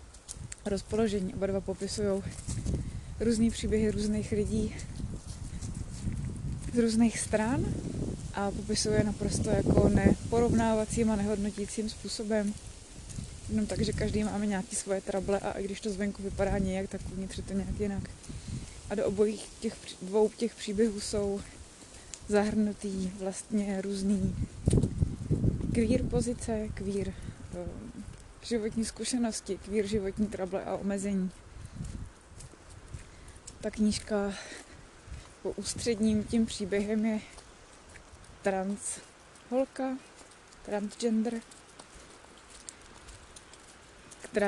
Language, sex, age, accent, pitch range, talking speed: Czech, female, 20-39, native, 195-220 Hz, 100 wpm